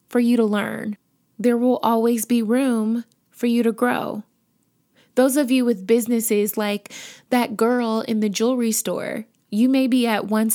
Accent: American